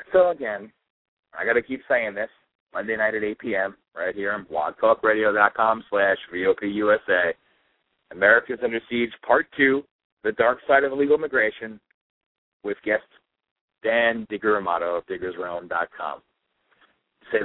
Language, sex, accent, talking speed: English, male, American, 125 wpm